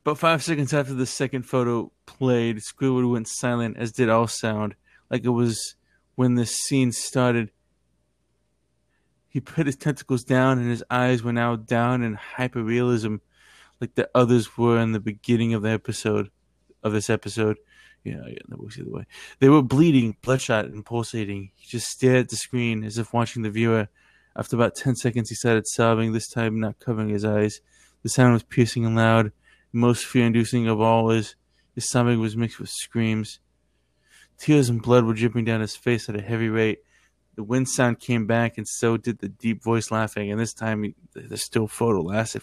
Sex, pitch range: male, 110-125 Hz